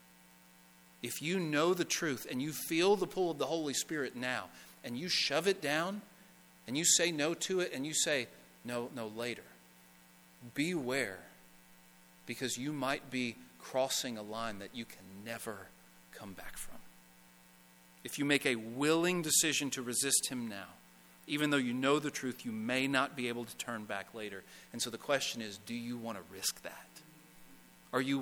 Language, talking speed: English, 180 wpm